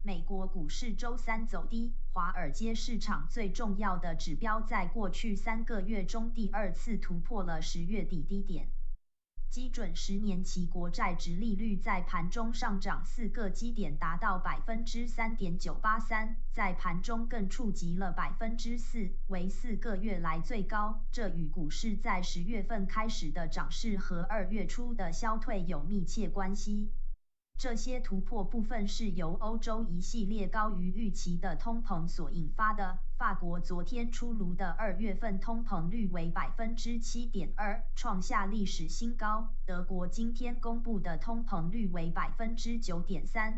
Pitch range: 180-225 Hz